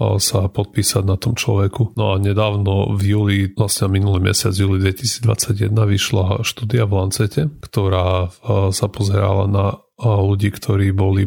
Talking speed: 140 wpm